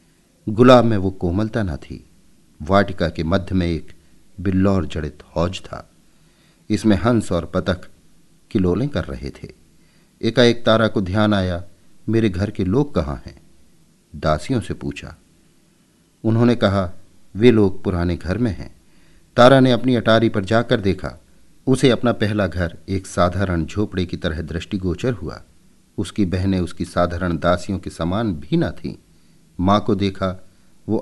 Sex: male